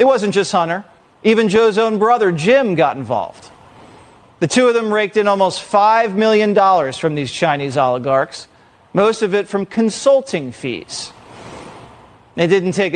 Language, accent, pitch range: English, American, 160-215 Hz